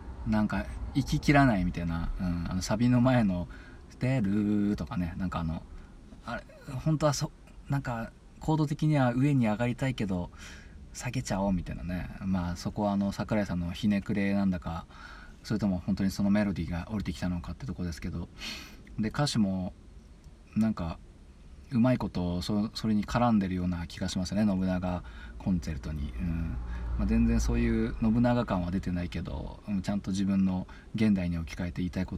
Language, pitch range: Japanese, 85-115 Hz